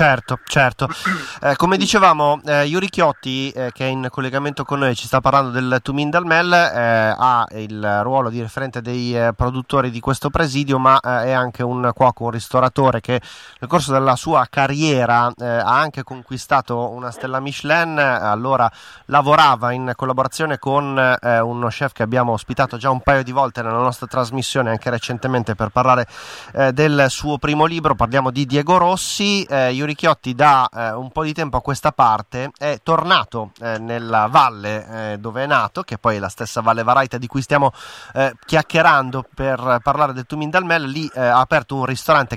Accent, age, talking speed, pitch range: native, 30-49, 180 wpm, 120-140 Hz